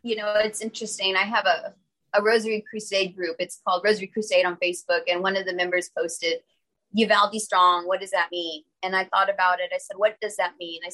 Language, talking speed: English, 225 wpm